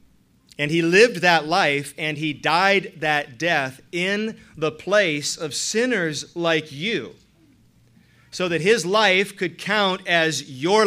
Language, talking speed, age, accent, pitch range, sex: English, 140 wpm, 30-49, American, 145-200 Hz, male